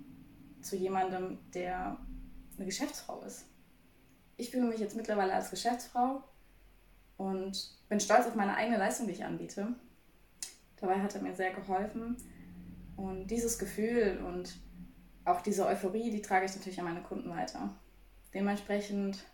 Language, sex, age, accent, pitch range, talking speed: German, female, 20-39, German, 185-215 Hz, 140 wpm